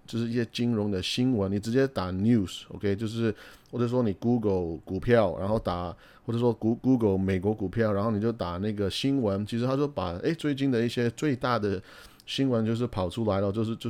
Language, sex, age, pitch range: Chinese, male, 30-49, 95-115 Hz